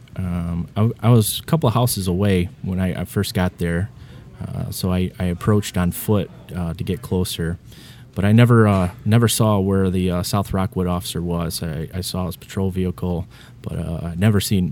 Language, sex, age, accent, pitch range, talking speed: English, male, 30-49, American, 90-105 Hz, 205 wpm